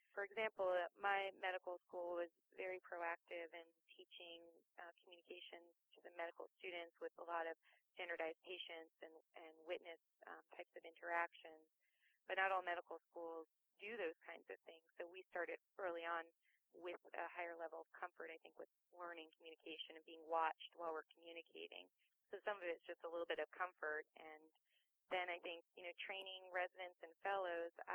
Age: 30-49